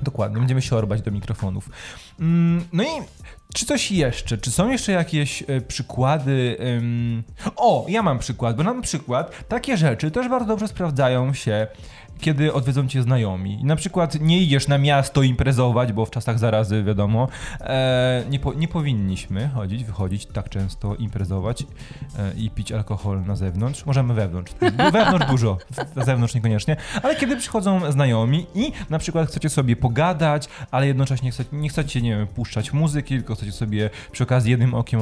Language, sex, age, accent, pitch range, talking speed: Polish, male, 20-39, native, 110-155 Hz, 160 wpm